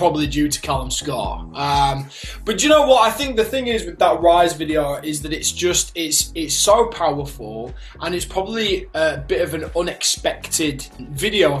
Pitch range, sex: 145-170 Hz, male